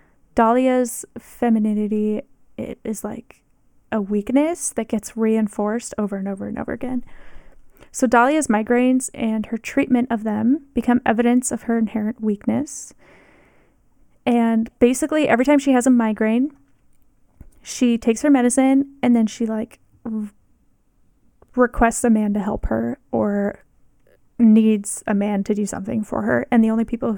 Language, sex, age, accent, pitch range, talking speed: English, female, 10-29, American, 220-255 Hz, 145 wpm